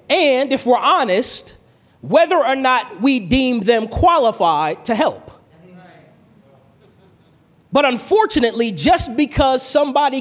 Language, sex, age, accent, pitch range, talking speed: English, male, 30-49, American, 200-280 Hz, 105 wpm